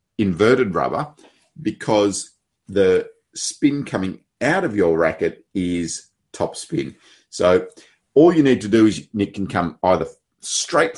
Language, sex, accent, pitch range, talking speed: English, male, Australian, 90-130 Hz, 135 wpm